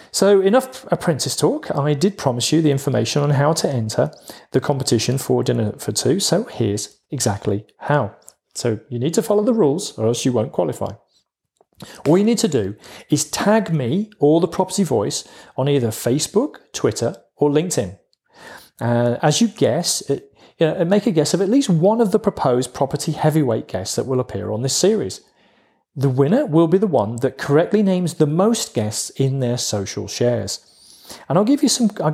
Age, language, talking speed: 40-59, English, 190 wpm